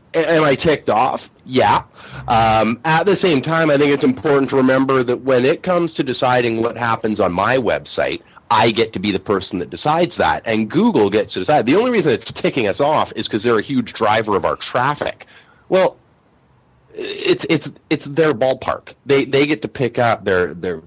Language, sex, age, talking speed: English, male, 30-49, 205 wpm